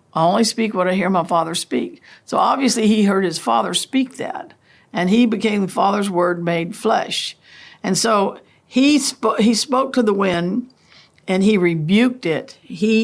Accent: American